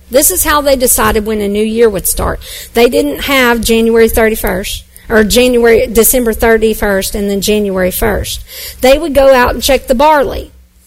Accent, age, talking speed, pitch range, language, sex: American, 40-59, 175 wpm, 200-270 Hz, English, female